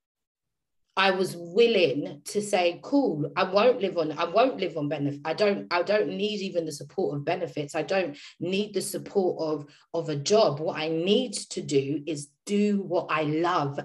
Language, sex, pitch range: English, female, 150-210 Hz